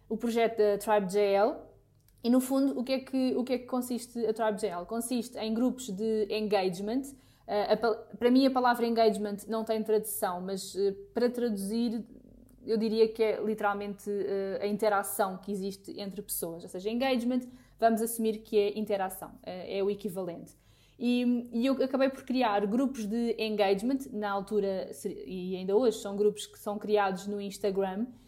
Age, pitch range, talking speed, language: 20-39, 210-245 Hz, 165 wpm, Portuguese